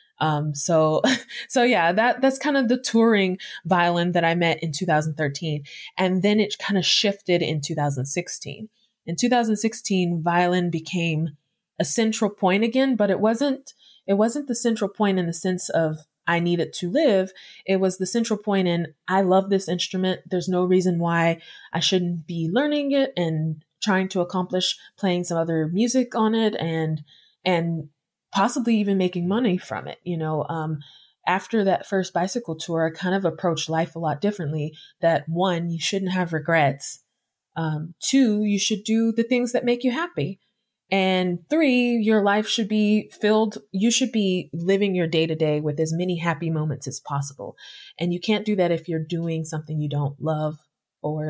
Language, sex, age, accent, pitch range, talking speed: English, female, 20-39, American, 160-215 Hz, 180 wpm